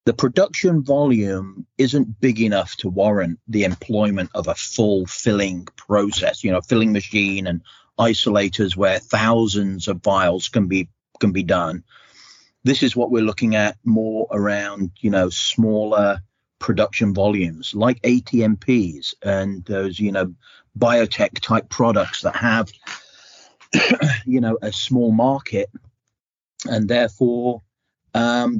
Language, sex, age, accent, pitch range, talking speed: English, male, 40-59, British, 100-125 Hz, 130 wpm